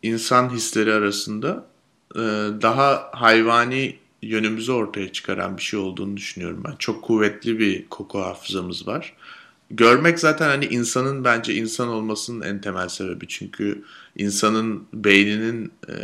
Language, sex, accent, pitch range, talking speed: Turkish, male, native, 105-135 Hz, 120 wpm